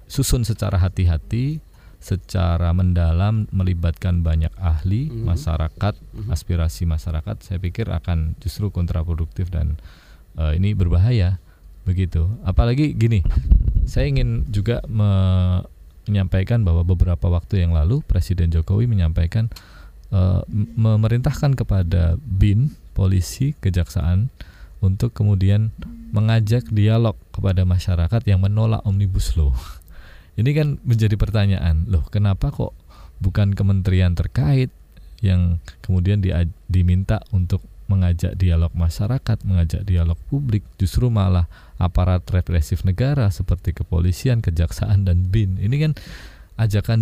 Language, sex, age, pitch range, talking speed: Indonesian, male, 20-39, 85-110 Hz, 110 wpm